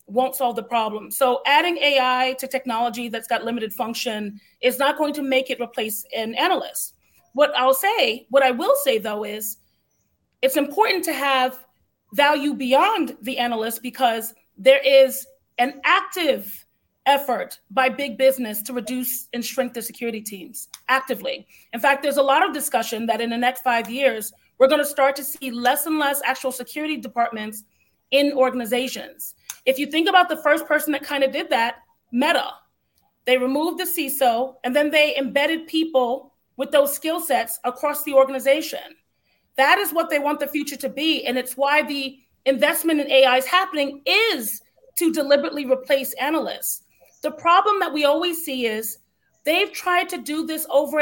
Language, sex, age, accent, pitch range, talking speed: English, female, 30-49, American, 250-295 Hz, 175 wpm